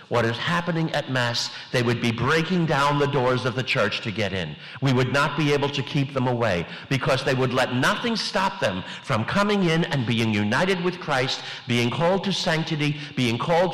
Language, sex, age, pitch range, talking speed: English, male, 50-69, 125-165 Hz, 210 wpm